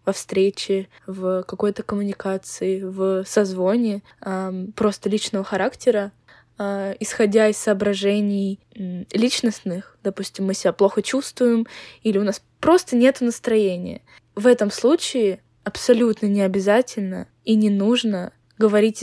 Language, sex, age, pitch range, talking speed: Russian, female, 10-29, 195-225 Hz, 120 wpm